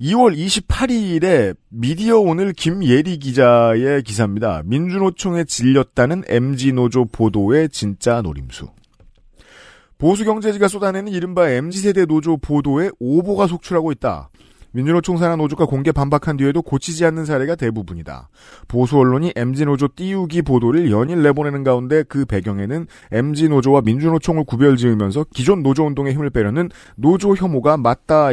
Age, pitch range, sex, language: 40-59, 125-170 Hz, male, Korean